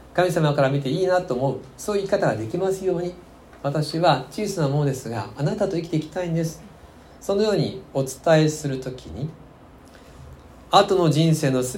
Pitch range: 120-160 Hz